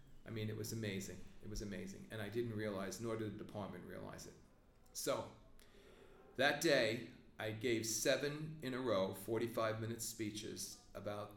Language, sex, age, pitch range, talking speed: English, male, 40-59, 105-115 Hz, 160 wpm